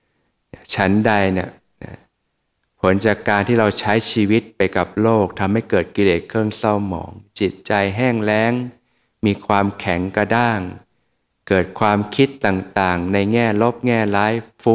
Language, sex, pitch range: Thai, male, 95-115 Hz